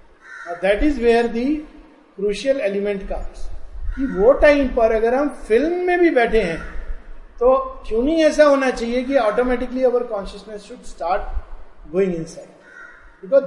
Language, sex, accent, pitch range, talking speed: Hindi, male, native, 185-245 Hz, 150 wpm